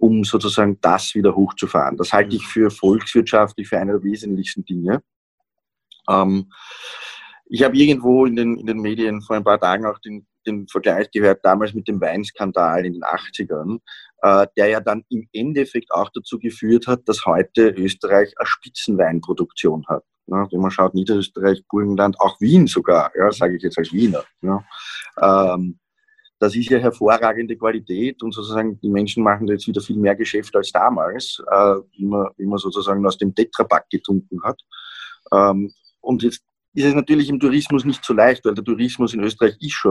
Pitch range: 95-115 Hz